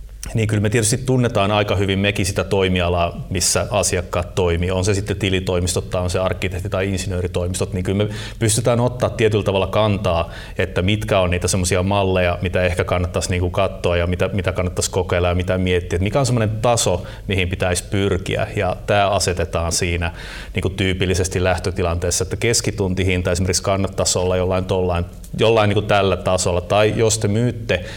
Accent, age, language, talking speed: native, 30-49, Finnish, 170 wpm